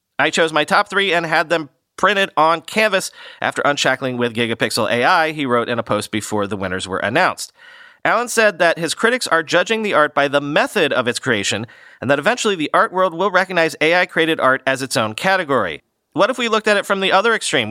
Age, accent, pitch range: 40-59, American, 130-190 Hz